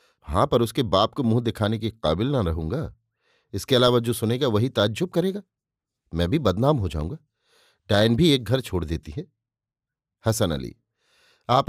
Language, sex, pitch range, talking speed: Hindi, male, 105-130 Hz, 170 wpm